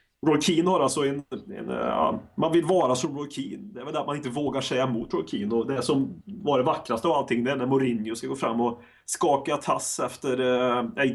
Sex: male